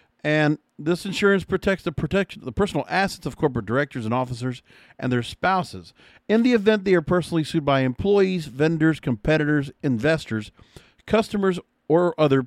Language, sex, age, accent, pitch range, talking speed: English, male, 50-69, American, 140-190 Hz, 155 wpm